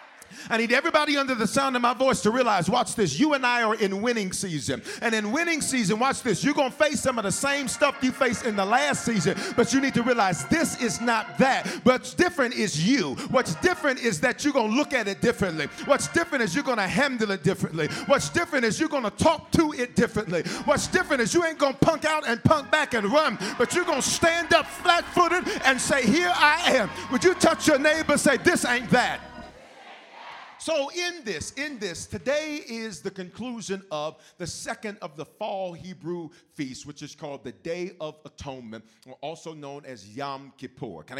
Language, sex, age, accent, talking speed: English, male, 40-59, American, 215 wpm